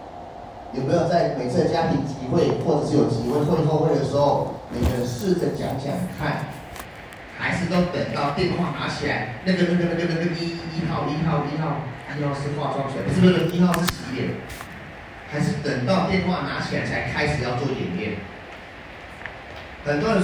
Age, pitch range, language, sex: 30-49, 135-170 Hz, Chinese, male